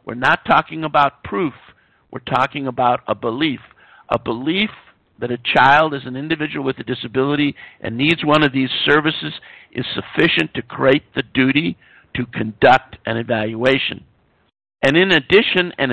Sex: male